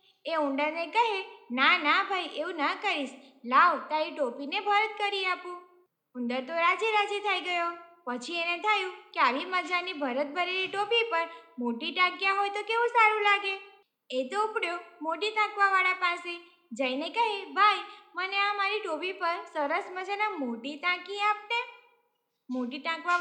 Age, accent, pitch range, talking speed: 20-39, native, 295-400 Hz, 155 wpm